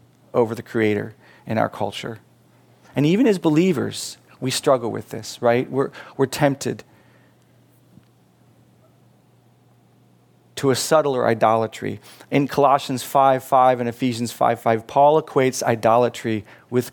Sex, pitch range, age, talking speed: male, 110-140 Hz, 40-59, 120 wpm